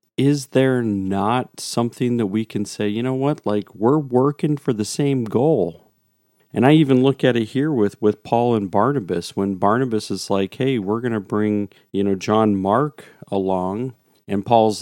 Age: 40-59